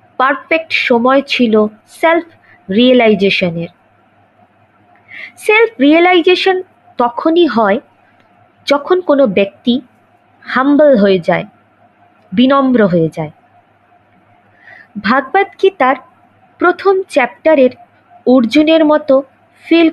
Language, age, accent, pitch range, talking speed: Bengali, 20-39, native, 230-330 Hz, 75 wpm